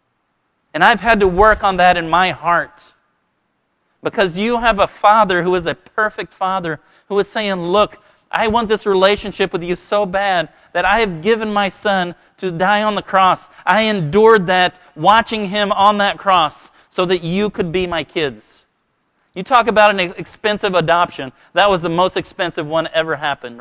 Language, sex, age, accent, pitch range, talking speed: English, male, 40-59, American, 160-200 Hz, 185 wpm